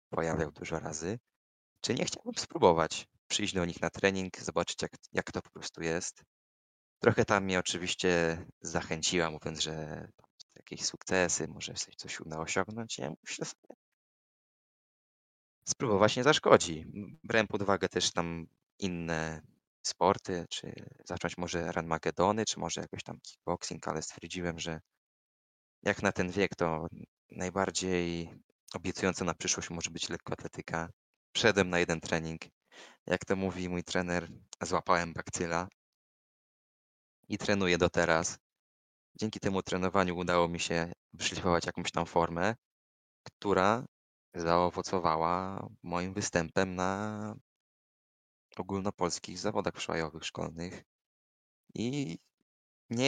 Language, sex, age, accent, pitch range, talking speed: Polish, male, 20-39, native, 85-100 Hz, 120 wpm